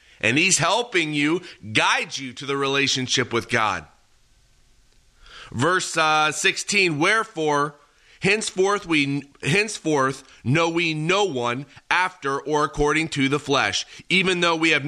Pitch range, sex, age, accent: 135-180 Hz, male, 30-49, American